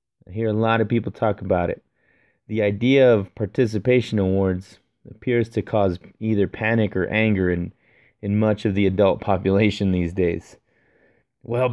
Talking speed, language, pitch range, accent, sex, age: 160 wpm, English, 105-125 Hz, American, male, 20-39